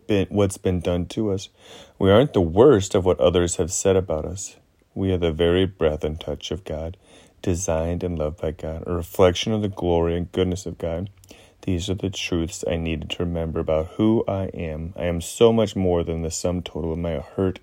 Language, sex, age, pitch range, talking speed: English, male, 30-49, 80-95 Hz, 215 wpm